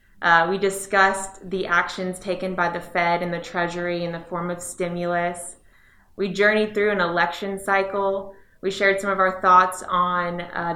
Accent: American